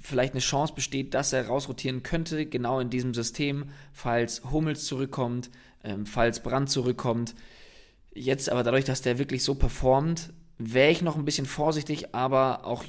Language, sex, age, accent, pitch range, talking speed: German, male, 20-39, German, 120-140 Hz, 165 wpm